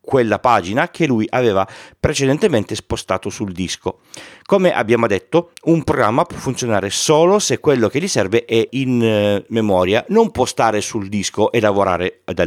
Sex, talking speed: male, 160 wpm